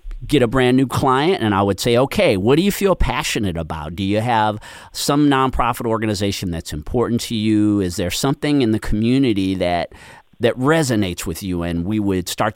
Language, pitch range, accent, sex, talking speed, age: English, 90-125 Hz, American, male, 195 wpm, 40-59